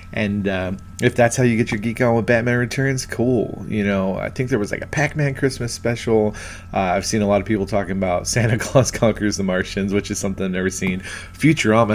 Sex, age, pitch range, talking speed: male, 30-49, 95-115 Hz, 230 wpm